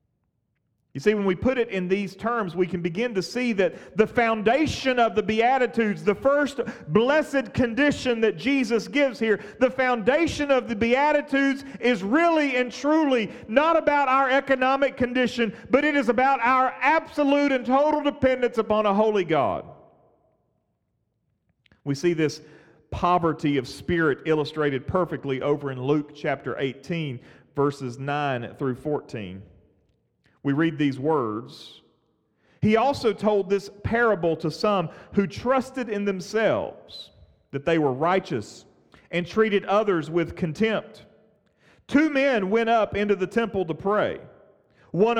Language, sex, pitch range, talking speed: English, male, 155-250 Hz, 140 wpm